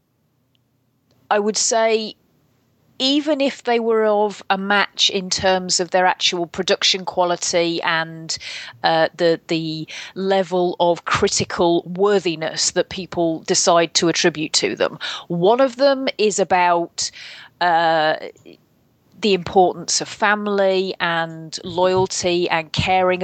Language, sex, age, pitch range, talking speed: English, female, 30-49, 170-195 Hz, 120 wpm